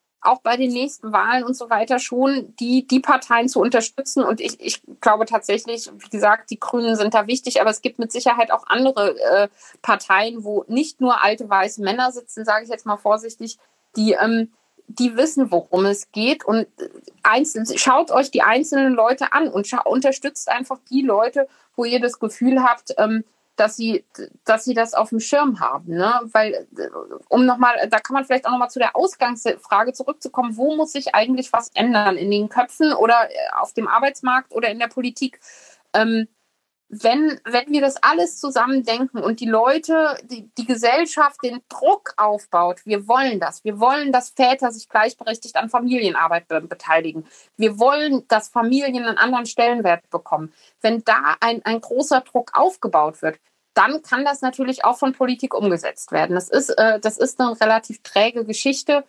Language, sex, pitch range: German, female, 220-260 Hz